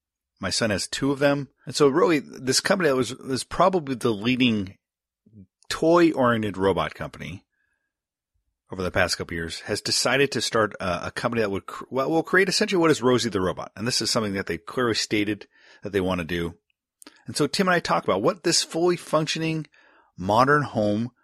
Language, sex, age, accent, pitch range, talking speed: English, male, 30-49, American, 100-135 Hz, 200 wpm